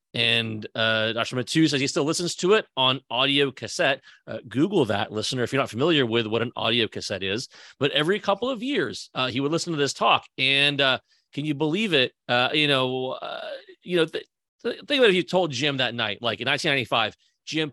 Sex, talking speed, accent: male, 215 wpm, American